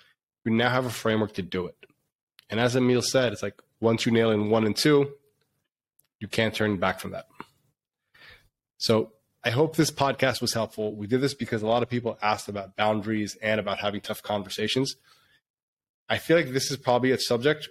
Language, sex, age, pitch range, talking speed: English, male, 20-39, 110-130 Hz, 195 wpm